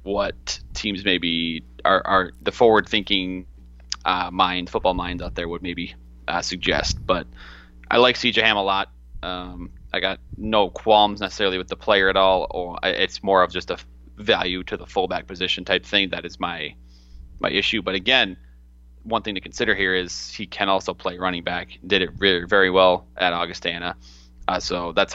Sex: male